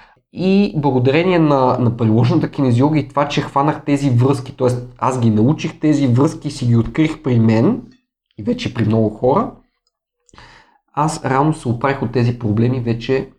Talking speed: 165 wpm